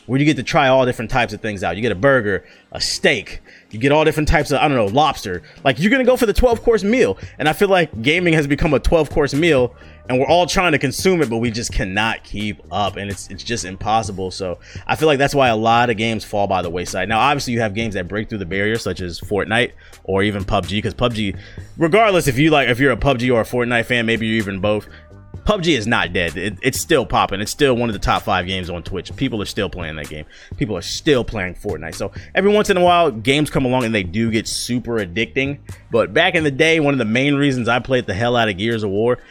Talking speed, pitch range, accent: 265 wpm, 100-140 Hz, American